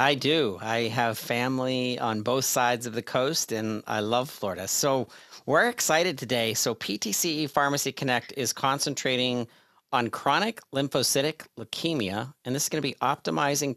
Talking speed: 155 wpm